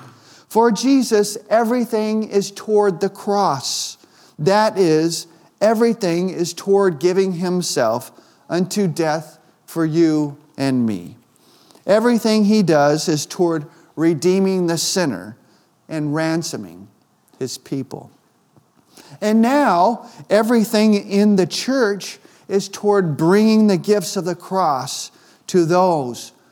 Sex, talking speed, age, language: male, 110 wpm, 40-59, English